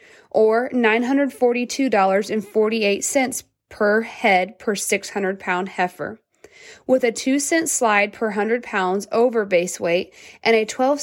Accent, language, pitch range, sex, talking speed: American, English, 205-250 Hz, female, 120 wpm